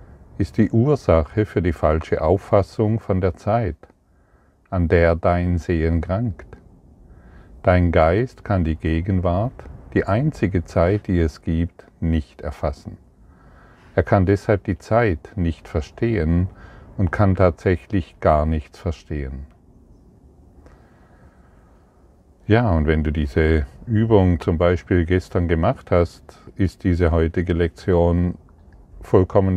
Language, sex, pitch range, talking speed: German, male, 80-100 Hz, 115 wpm